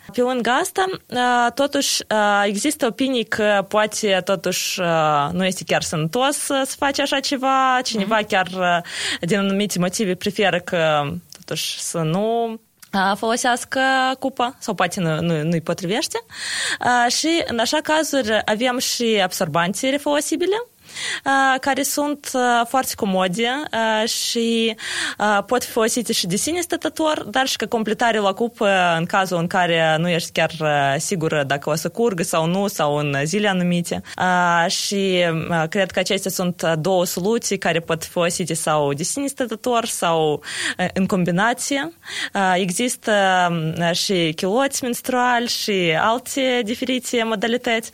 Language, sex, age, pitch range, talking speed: Romanian, female, 20-39, 175-245 Hz, 140 wpm